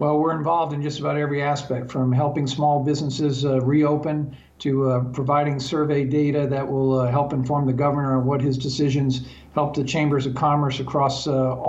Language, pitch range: English, 135-155 Hz